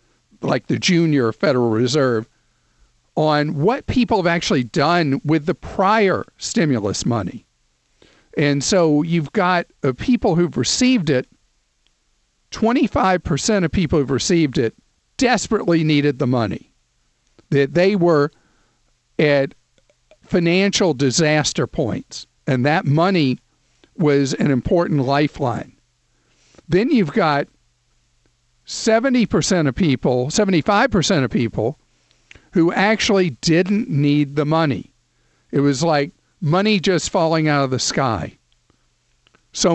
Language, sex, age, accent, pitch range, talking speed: English, male, 50-69, American, 140-185 Hz, 115 wpm